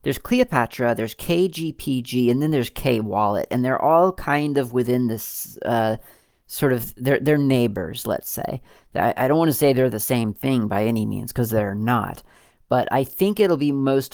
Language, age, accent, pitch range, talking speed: English, 40-59, American, 115-140 Hz, 195 wpm